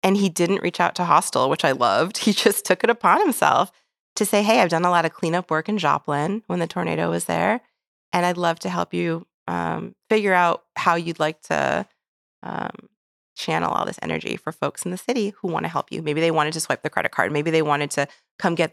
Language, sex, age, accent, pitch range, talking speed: English, female, 30-49, American, 155-200 Hz, 240 wpm